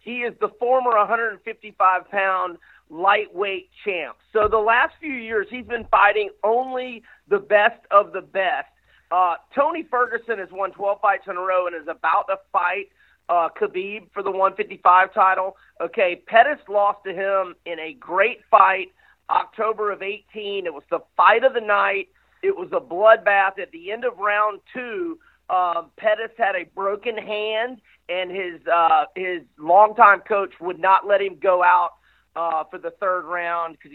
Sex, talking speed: male, 170 wpm